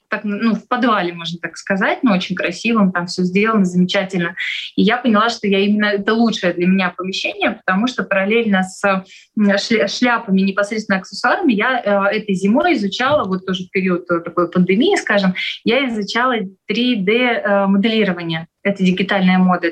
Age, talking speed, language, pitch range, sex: 20-39, 160 wpm, Russian, 190-225 Hz, female